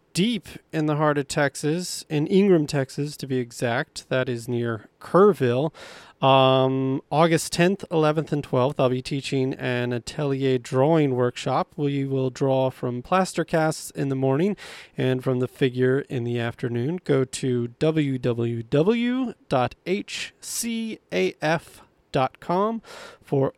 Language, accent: English, American